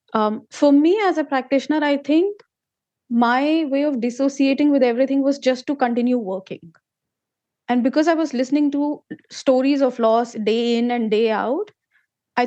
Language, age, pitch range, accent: Hindi, 20-39, 220-265 Hz, native